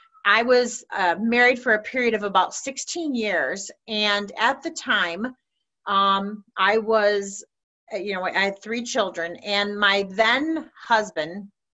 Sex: female